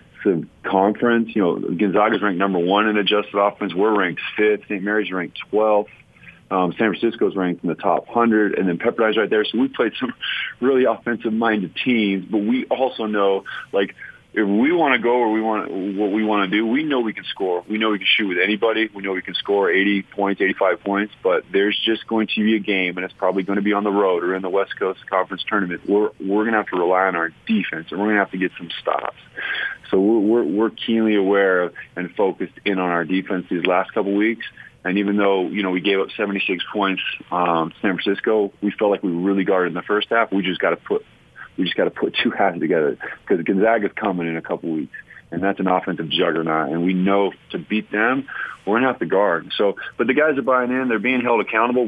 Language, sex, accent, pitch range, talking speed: English, male, American, 90-110 Hz, 240 wpm